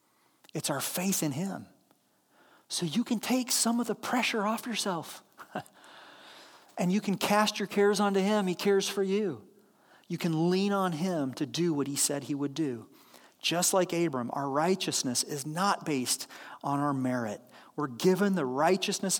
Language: English